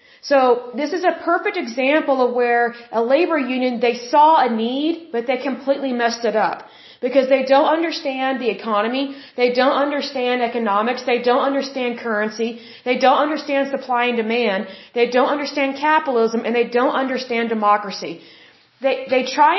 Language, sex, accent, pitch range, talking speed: Hindi, female, American, 240-285 Hz, 160 wpm